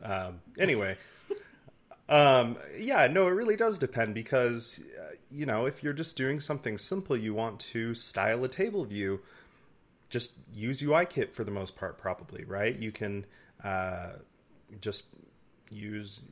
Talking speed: 150 wpm